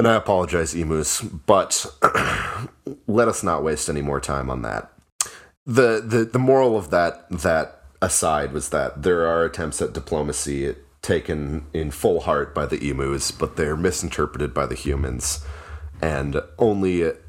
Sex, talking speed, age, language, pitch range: male, 155 wpm, 30-49, English, 70-85 Hz